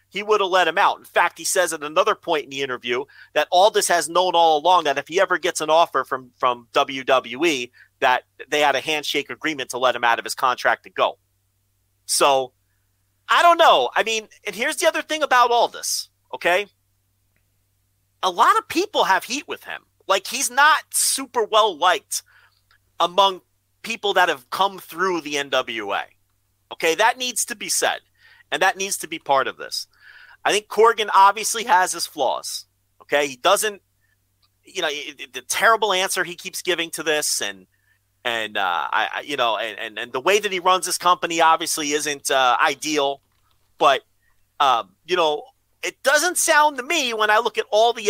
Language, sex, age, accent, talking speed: English, male, 40-59, American, 195 wpm